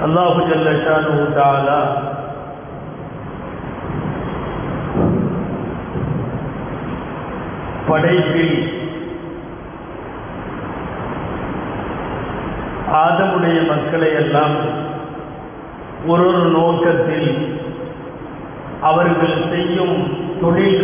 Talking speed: 30 wpm